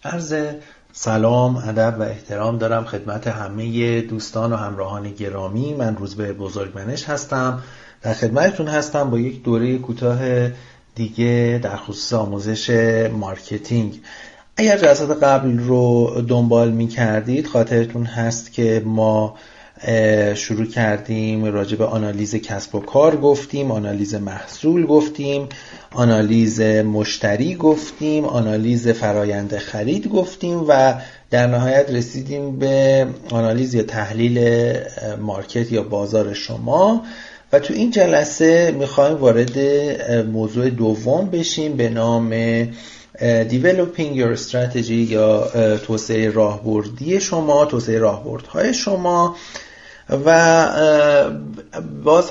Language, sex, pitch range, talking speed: Persian, male, 110-140 Hz, 105 wpm